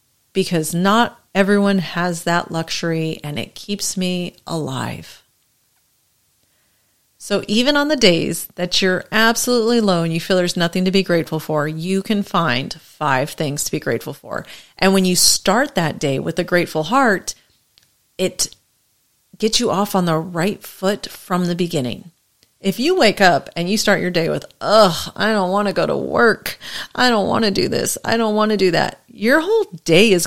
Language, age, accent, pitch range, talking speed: English, 40-59, American, 165-210 Hz, 185 wpm